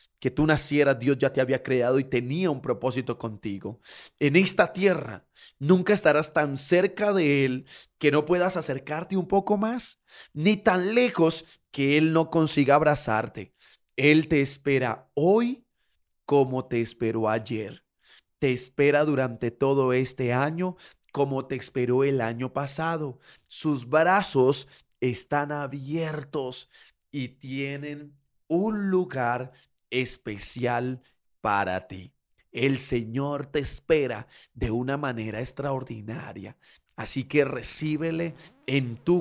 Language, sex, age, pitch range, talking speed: Spanish, male, 30-49, 120-150 Hz, 125 wpm